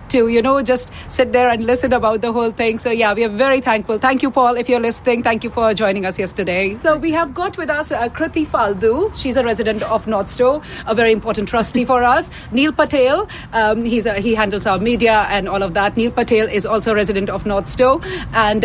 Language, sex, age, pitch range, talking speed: English, female, 40-59, 225-290 Hz, 230 wpm